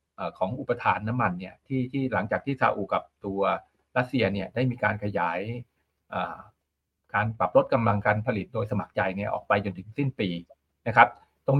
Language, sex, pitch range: Thai, male, 105-140 Hz